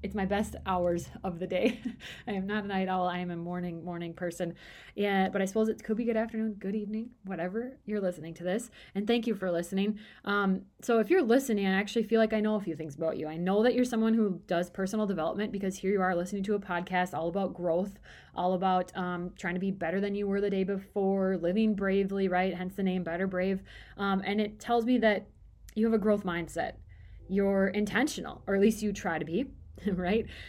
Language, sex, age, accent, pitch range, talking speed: English, female, 20-39, American, 175-215 Hz, 230 wpm